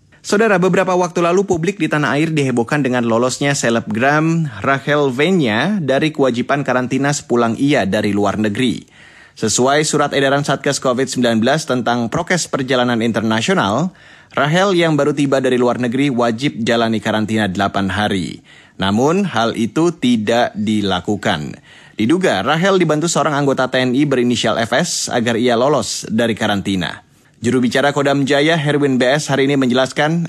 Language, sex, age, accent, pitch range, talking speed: Indonesian, male, 30-49, native, 115-150 Hz, 135 wpm